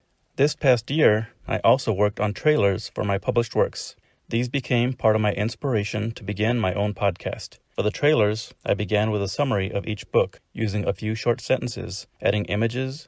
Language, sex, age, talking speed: English, male, 30-49, 190 wpm